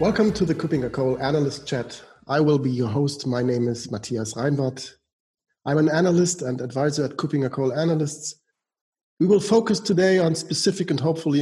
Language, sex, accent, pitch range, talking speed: English, male, German, 130-165 Hz, 180 wpm